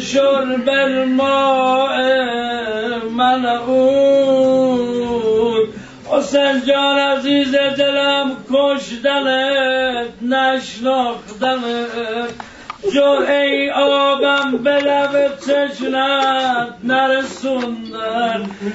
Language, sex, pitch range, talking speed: Persian, male, 240-280 Hz, 60 wpm